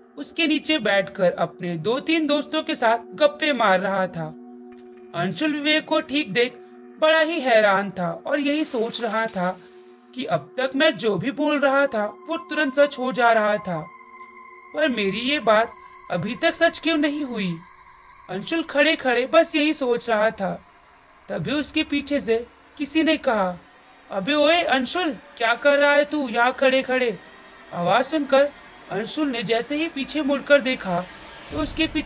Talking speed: 170 wpm